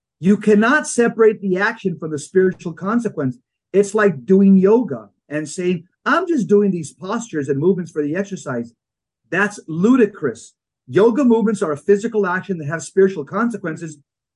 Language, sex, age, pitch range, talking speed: English, male, 40-59, 165-220 Hz, 155 wpm